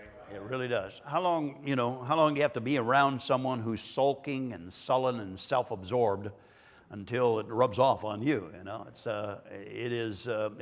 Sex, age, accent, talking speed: male, 60-79, American, 200 wpm